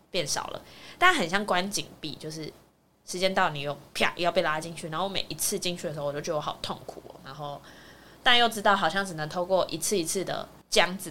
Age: 20-39